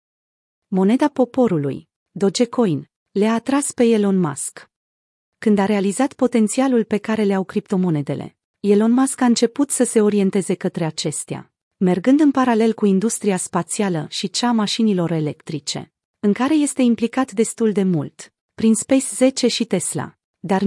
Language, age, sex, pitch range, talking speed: Romanian, 30-49, female, 180-235 Hz, 135 wpm